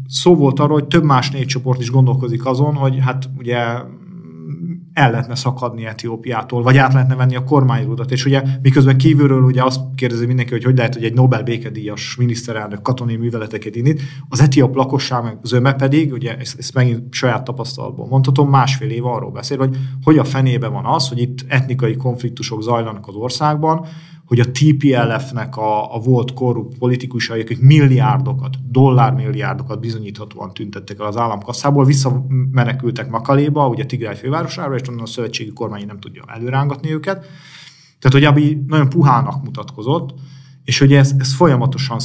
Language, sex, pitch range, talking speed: Hungarian, male, 120-140 Hz, 160 wpm